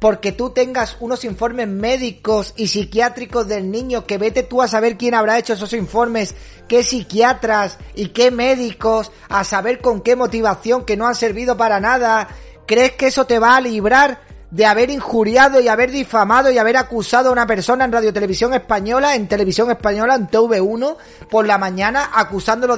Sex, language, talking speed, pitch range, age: male, Spanish, 180 wpm, 185-240 Hz, 30-49